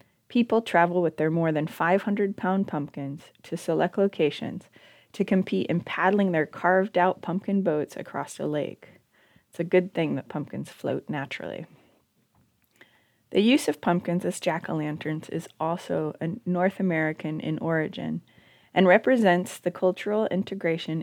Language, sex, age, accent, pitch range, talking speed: English, female, 20-39, American, 155-185 Hz, 135 wpm